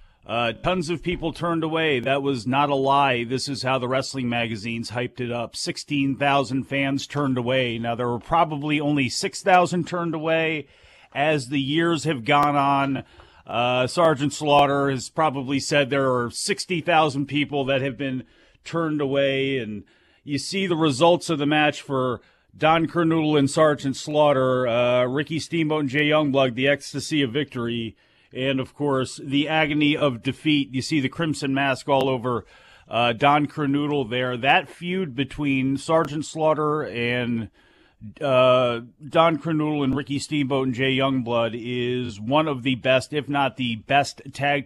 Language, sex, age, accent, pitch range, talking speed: English, male, 40-59, American, 130-155 Hz, 160 wpm